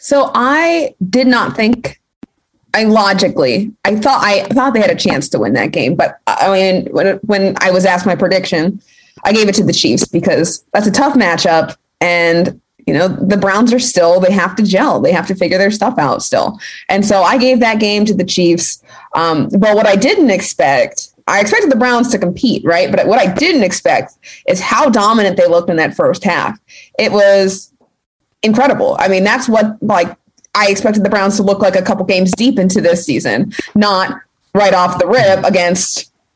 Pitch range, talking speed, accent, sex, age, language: 185-225 Hz, 205 wpm, American, female, 20-39, English